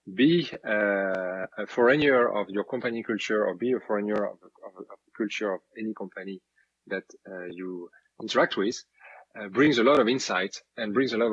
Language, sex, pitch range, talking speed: English, male, 95-115 Hz, 185 wpm